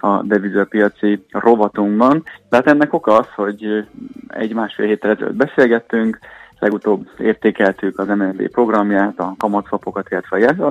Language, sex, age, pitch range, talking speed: Hungarian, male, 30-49, 100-115 Hz, 135 wpm